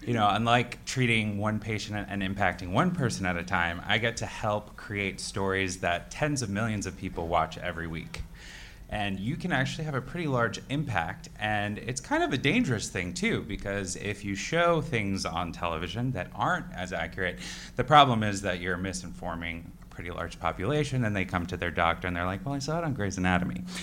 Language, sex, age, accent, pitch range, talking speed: English, male, 20-39, American, 90-125 Hz, 205 wpm